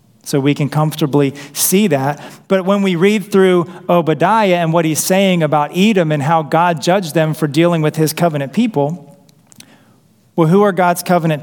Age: 40-59